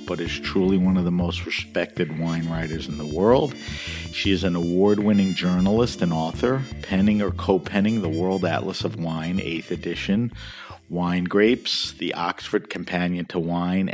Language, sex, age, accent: English, male, 50-69, American